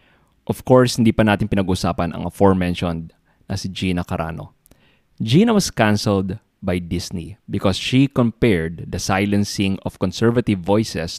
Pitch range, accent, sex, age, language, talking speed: 90-115 Hz, Filipino, male, 20-39, English, 135 wpm